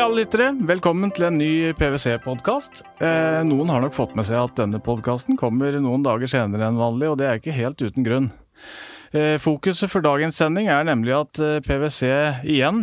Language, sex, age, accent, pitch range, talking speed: English, male, 30-49, Norwegian, 120-150 Hz, 185 wpm